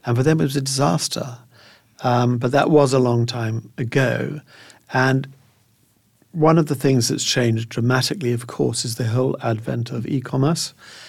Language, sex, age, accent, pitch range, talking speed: English, male, 50-69, British, 115-135 Hz, 170 wpm